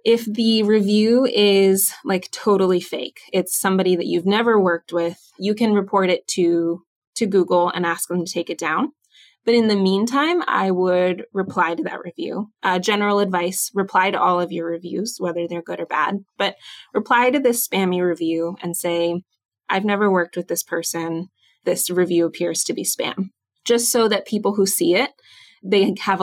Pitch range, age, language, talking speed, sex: 175-225 Hz, 20-39, English, 185 wpm, female